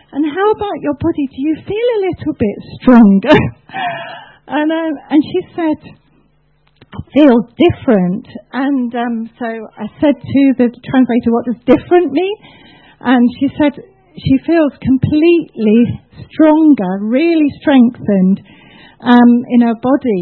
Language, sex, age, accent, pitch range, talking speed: English, female, 40-59, British, 245-325 Hz, 135 wpm